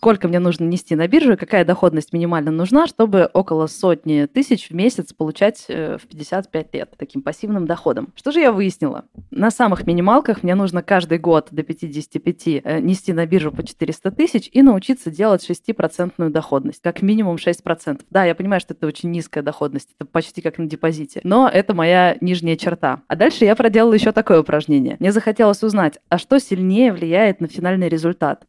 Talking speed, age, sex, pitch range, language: 180 wpm, 20-39, female, 165-210 Hz, Russian